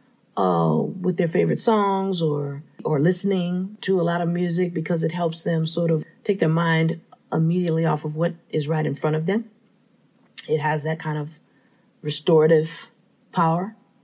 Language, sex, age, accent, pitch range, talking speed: English, female, 40-59, American, 165-220 Hz, 165 wpm